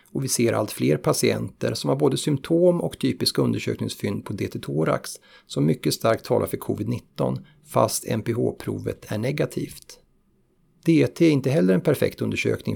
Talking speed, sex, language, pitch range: 150 wpm, male, Swedish, 105-140 Hz